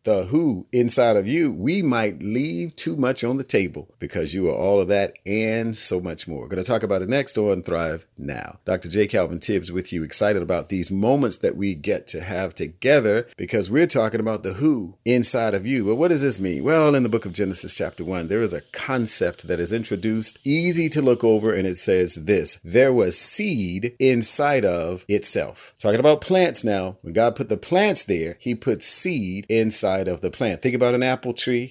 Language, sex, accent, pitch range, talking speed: English, male, American, 95-125 Hz, 215 wpm